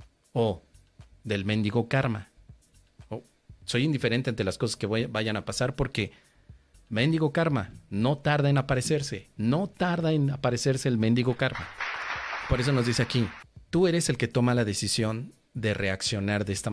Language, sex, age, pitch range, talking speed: Spanish, male, 40-59, 105-130 Hz, 155 wpm